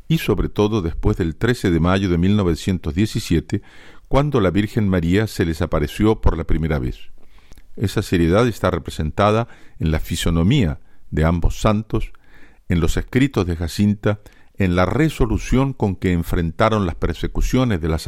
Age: 50-69